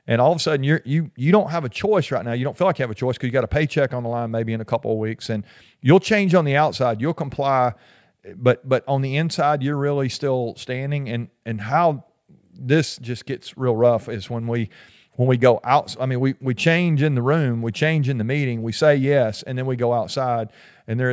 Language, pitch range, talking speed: English, 120-150 Hz, 260 wpm